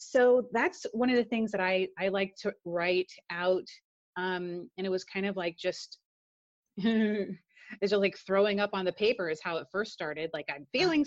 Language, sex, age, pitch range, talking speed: English, female, 30-49, 170-205 Hz, 200 wpm